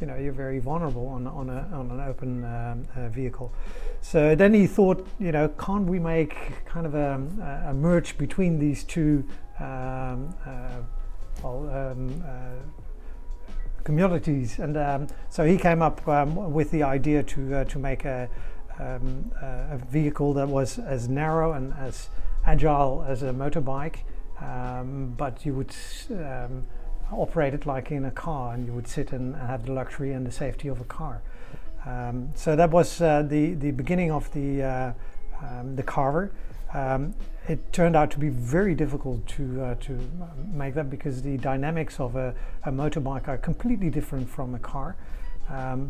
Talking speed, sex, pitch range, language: 170 wpm, male, 130-155 Hz, English